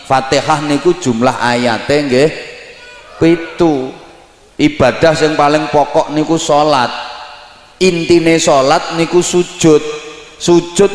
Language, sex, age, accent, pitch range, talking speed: Indonesian, male, 30-49, native, 125-160 Hz, 95 wpm